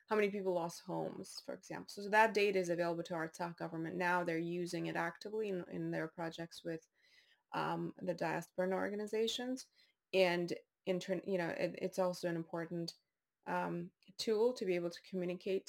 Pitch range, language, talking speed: 175-200 Hz, English, 180 wpm